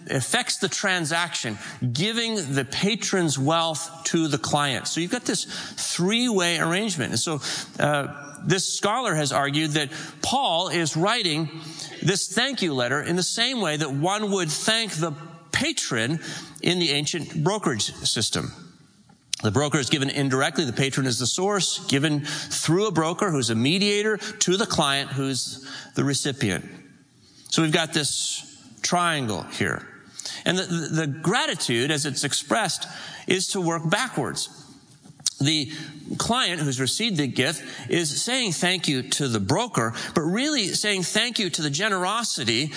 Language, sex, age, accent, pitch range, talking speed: English, male, 40-59, American, 145-195 Hz, 150 wpm